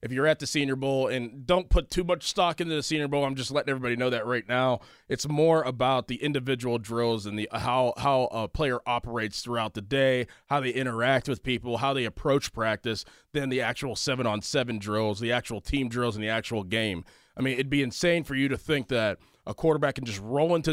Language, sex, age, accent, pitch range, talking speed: English, male, 20-39, American, 120-150 Hz, 225 wpm